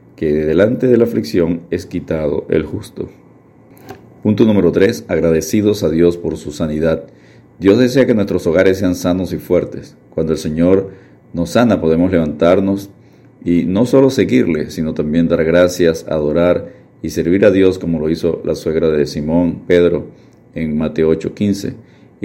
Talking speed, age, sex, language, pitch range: 160 wpm, 50-69, male, Spanish, 80-90 Hz